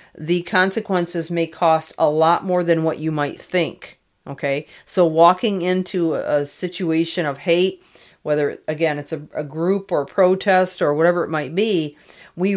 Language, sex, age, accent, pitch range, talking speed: English, female, 40-59, American, 155-185 Hz, 160 wpm